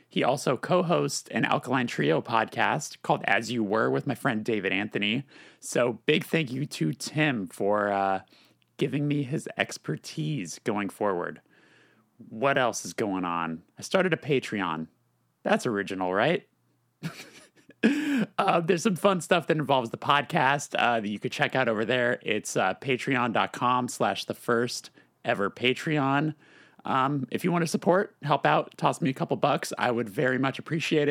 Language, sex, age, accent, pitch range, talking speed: English, male, 30-49, American, 115-150 Hz, 160 wpm